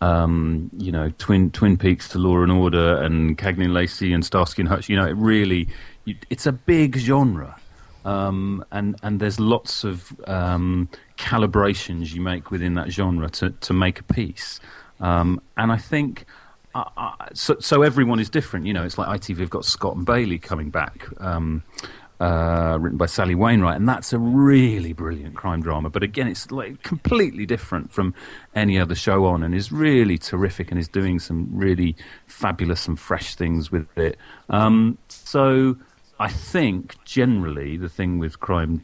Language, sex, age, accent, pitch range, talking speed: English, male, 40-59, British, 85-105 Hz, 180 wpm